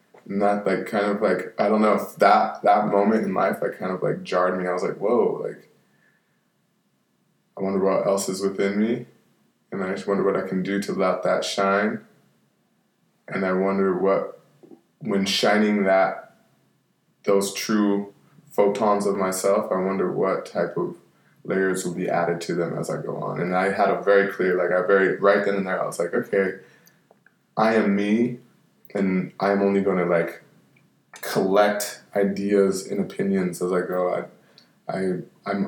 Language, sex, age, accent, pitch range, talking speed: English, male, 20-39, American, 95-105 Hz, 180 wpm